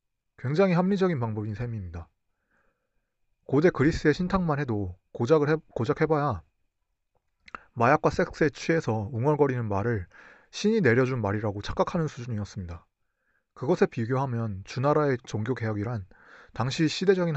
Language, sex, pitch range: Korean, male, 105-155 Hz